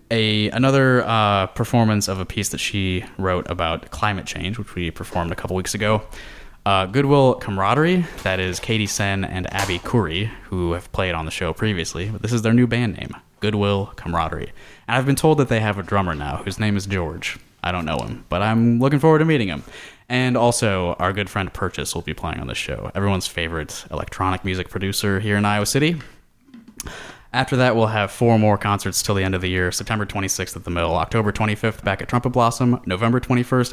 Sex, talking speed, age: male, 210 wpm, 20-39